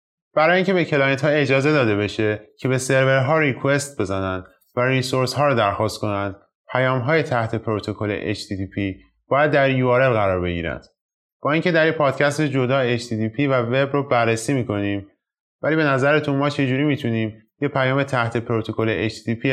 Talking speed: 160 wpm